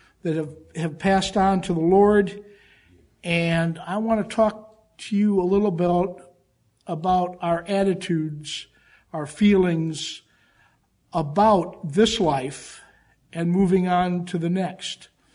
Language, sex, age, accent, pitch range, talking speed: English, male, 50-69, American, 165-200 Hz, 125 wpm